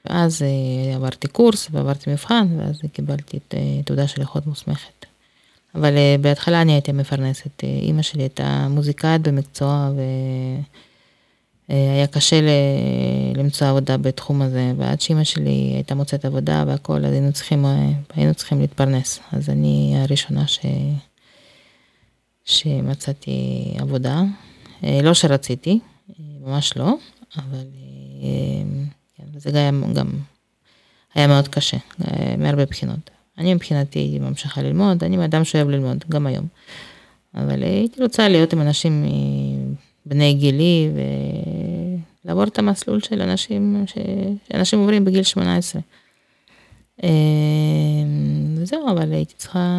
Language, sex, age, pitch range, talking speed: Hebrew, female, 20-39, 130-170 Hz, 110 wpm